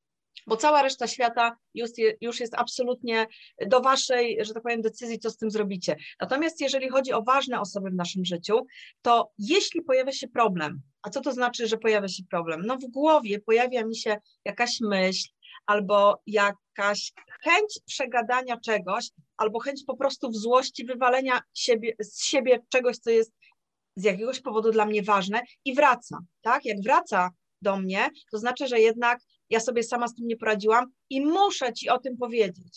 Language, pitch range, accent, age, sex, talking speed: Polish, 215-265 Hz, native, 30-49, female, 175 wpm